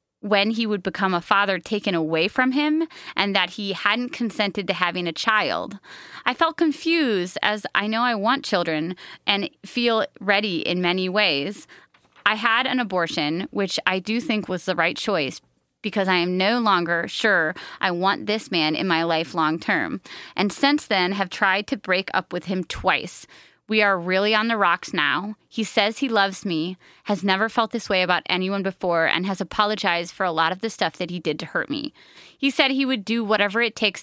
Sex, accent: female, American